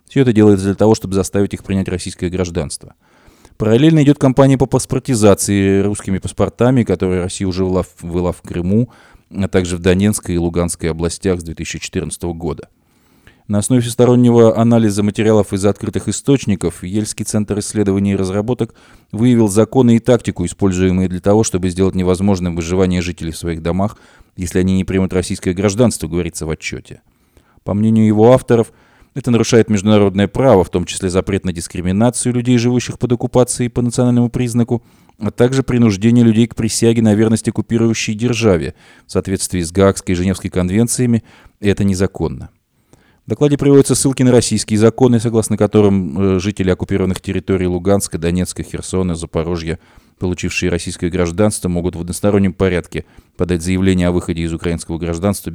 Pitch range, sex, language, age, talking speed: 90-115 Hz, male, Russian, 20-39, 150 wpm